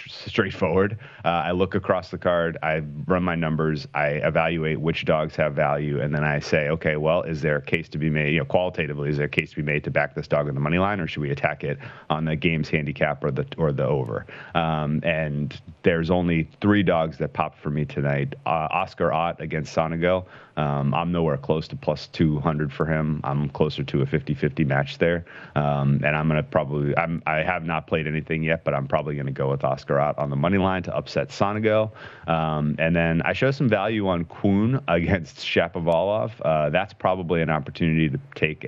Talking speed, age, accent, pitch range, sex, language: 220 wpm, 30-49, American, 70-85 Hz, male, English